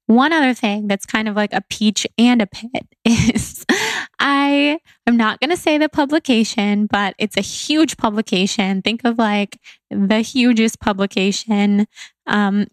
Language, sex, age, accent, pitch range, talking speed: English, female, 10-29, American, 210-245 Hz, 155 wpm